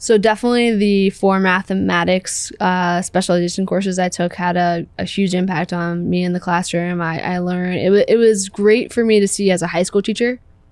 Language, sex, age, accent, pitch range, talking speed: English, female, 10-29, American, 175-195 Hz, 205 wpm